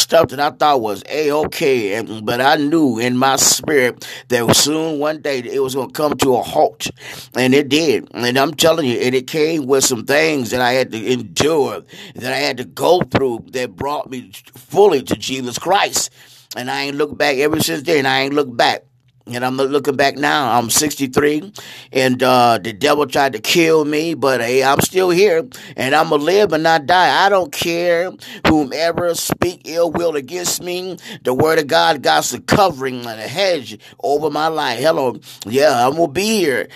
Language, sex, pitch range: English, male, 130-165 Hz